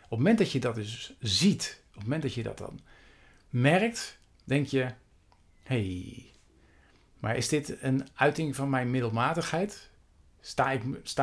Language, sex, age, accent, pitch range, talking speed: Dutch, male, 50-69, Dutch, 105-150 Hz, 150 wpm